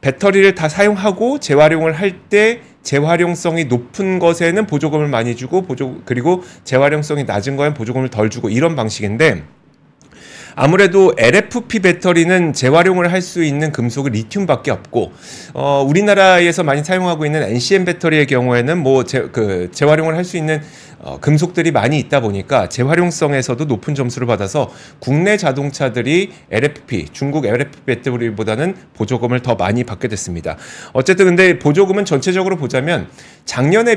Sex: male